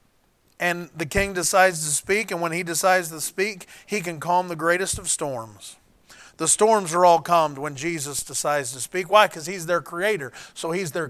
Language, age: English, 40-59